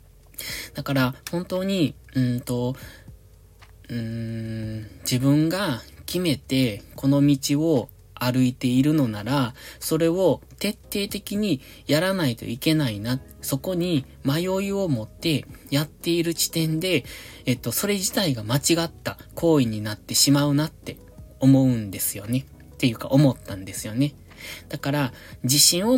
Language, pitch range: Japanese, 110-155 Hz